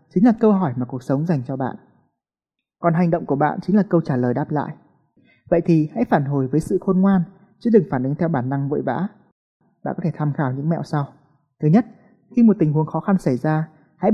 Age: 20-39